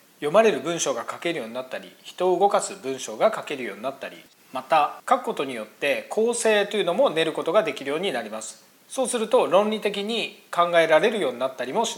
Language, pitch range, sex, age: Japanese, 150-215 Hz, male, 40-59